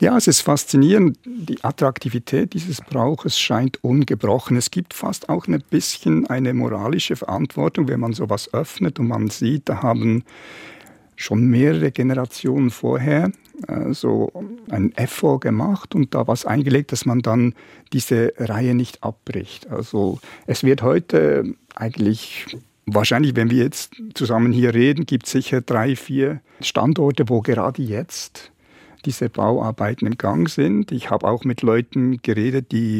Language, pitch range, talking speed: German, 115-135 Hz, 145 wpm